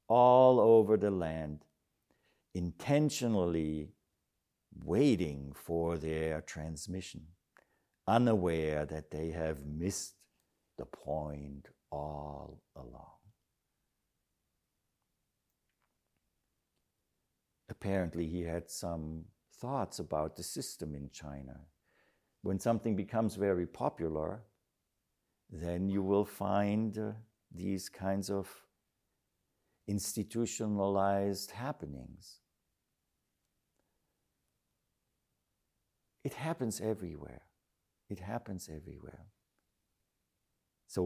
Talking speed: 75 wpm